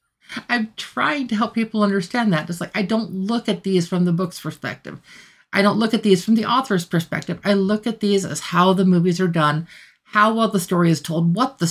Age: 50-69